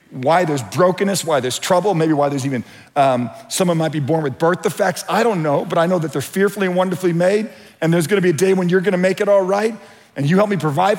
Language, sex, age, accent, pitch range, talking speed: English, male, 50-69, American, 125-175 Hz, 260 wpm